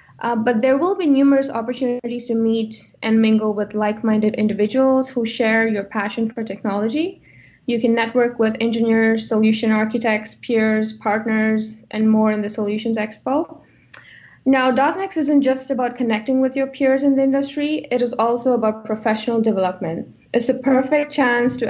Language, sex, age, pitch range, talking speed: English, female, 20-39, 215-255 Hz, 160 wpm